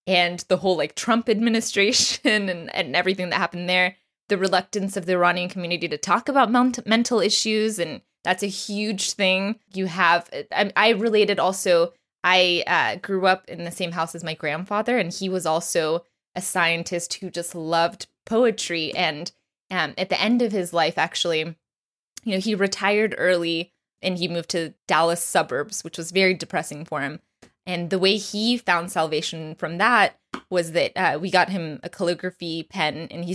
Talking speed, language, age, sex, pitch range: 180 wpm, English, 20-39, female, 170-205 Hz